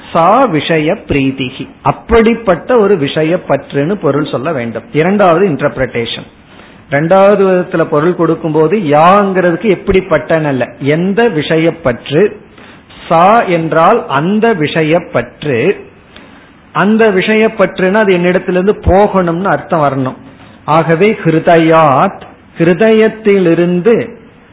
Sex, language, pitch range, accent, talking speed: male, Tamil, 150-200 Hz, native, 80 wpm